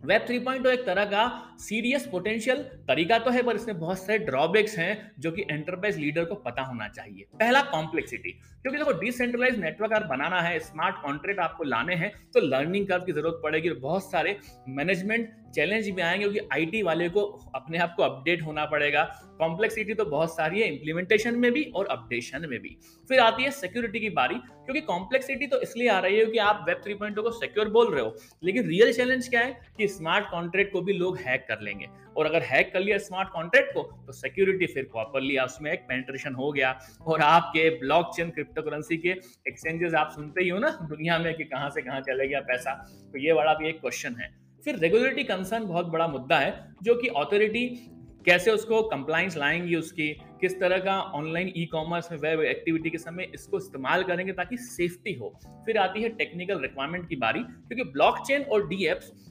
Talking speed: 160 wpm